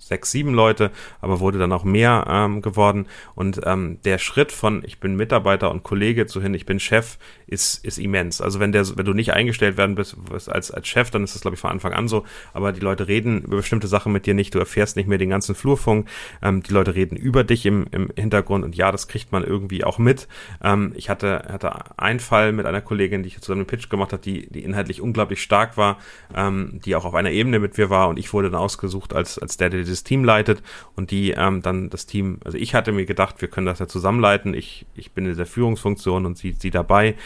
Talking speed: 250 wpm